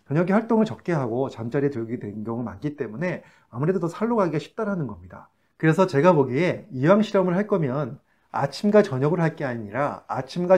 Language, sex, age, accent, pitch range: Korean, male, 30-49, native, 125-185 Hz